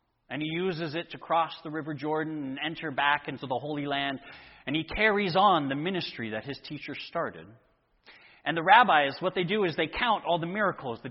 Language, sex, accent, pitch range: English, male, American, 140-170 Hz